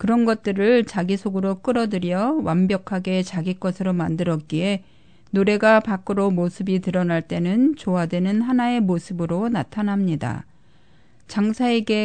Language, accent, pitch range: Korean, native, 180-235 Hz